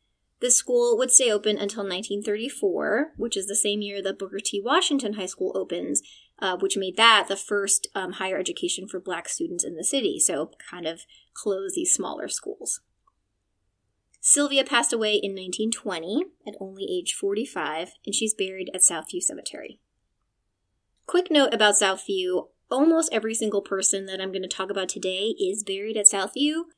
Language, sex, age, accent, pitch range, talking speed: English, female, 20-39, American, 190-260 Hz, 170 wpm